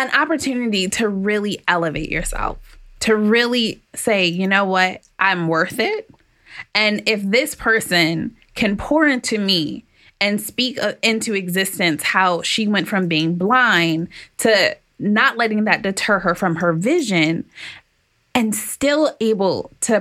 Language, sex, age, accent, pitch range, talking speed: English, female, 20-39, American, 180-225 Hz, 140 wpm